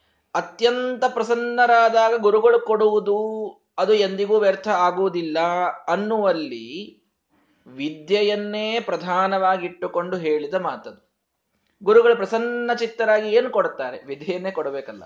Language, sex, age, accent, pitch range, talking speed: Kannada, male, 20-39, native, 165-235 Hz, 80 wpm